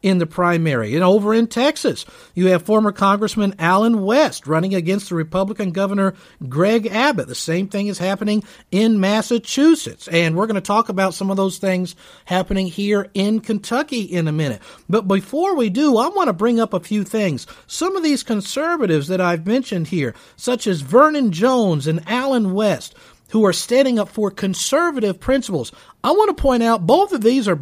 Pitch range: 175-235 Hz